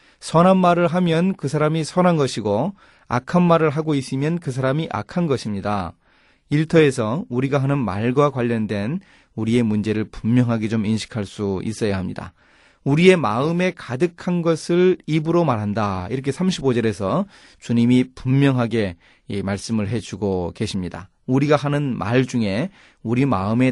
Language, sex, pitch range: Korean, male, 105-155 Hz